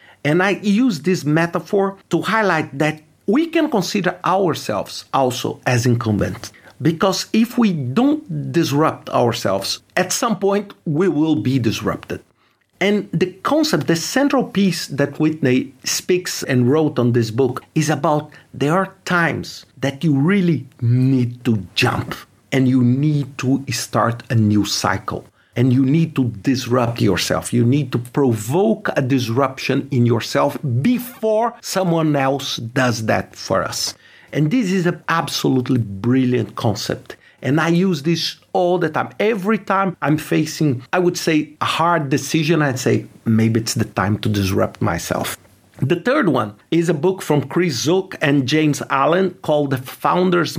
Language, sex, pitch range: English, male, 125-180 Hz